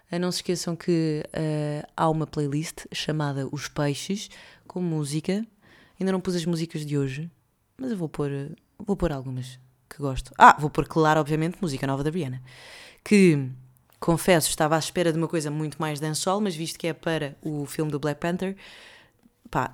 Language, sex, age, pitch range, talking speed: Portuguese, female, 20-39, 150-185 Hz, 175 wpm